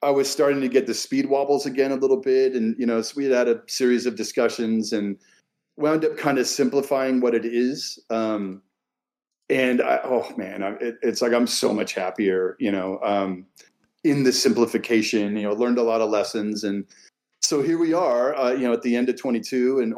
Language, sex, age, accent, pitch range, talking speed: English, male, 40-59, American, 110-135 Hz, 215 wpm